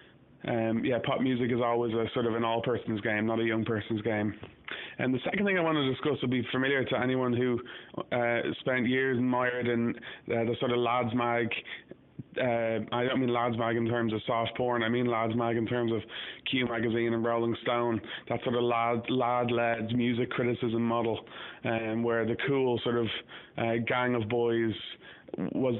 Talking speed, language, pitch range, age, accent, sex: 195 wpm, English, 115-130 Hz, 20-39, Irish, male